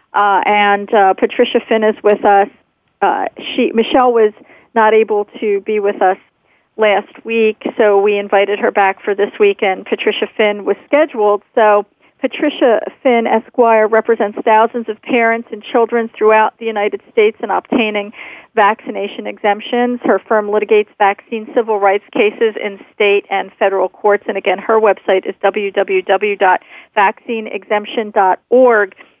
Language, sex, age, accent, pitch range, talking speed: English, female, 40-59, American, 210-250 Hz, 140 wpm